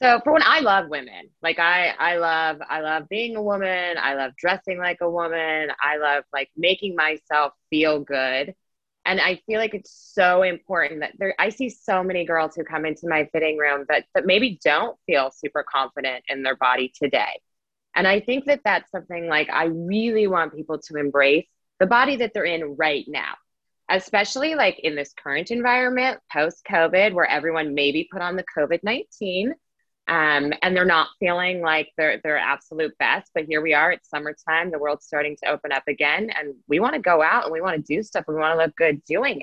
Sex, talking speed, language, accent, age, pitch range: female, 205 wpm, English, American, 20-39, 150-195 Hz